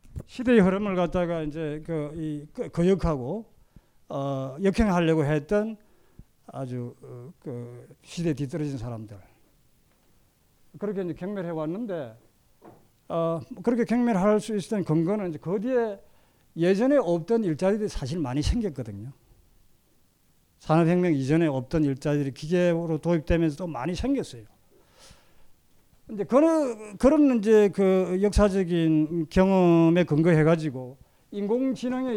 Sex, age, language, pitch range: male, 50-69, Korean, 155-210 Hz